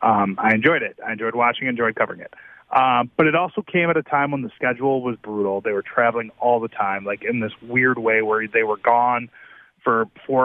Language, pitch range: English, 110-135 Hz